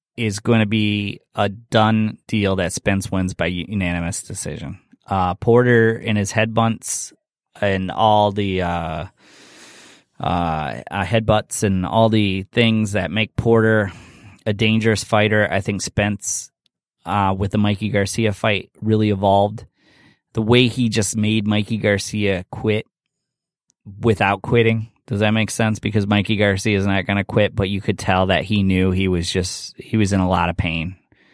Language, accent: English, American